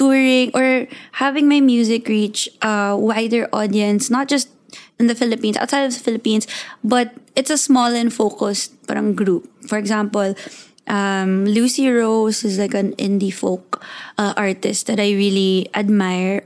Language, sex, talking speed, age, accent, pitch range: English, female, 150 wpm, 20-39, Filipino, 200-235 Hz